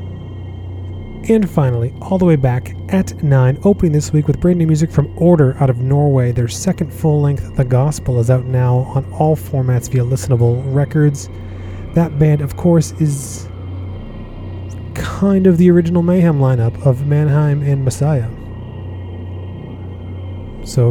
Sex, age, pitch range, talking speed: male, 30-49, 105-140 Hz, 145 wpm